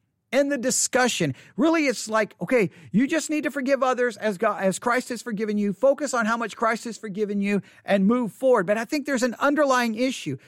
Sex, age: male, 50-69